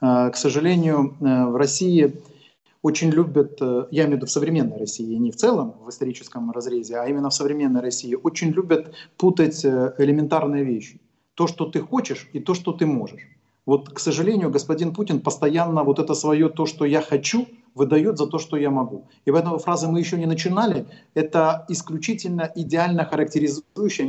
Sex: male